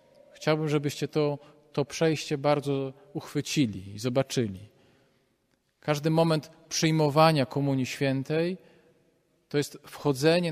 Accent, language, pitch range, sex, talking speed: native, Polish, 135-155 Hz, male, 95 wpm